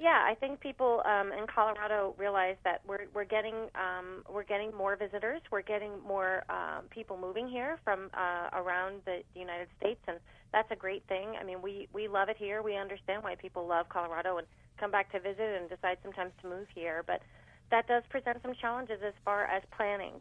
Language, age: English, 30-49